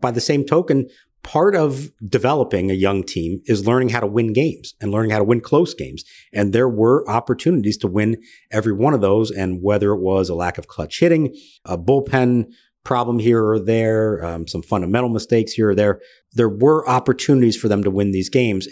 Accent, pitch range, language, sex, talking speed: American, 100-125 Hz, English, male, 205 wpm